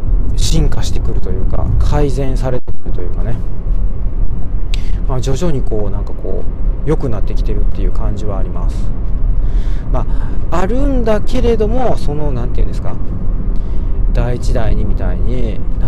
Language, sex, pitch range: Japanese, male, 95-120 Hz